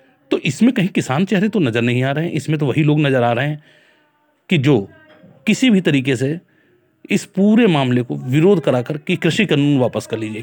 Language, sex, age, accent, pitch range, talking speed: Hindi, male, 30-49, native, 130-195 Hz, 215 wpm